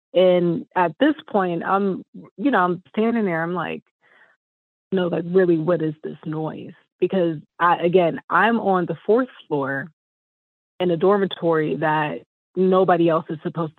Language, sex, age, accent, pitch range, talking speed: English, female, 30-49, American, 165-200 Hz, 150 wpm